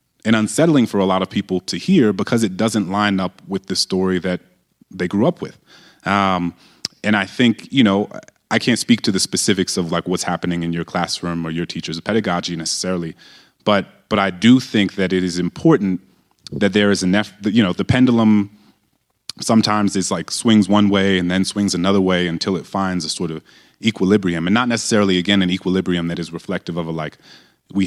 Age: 30-49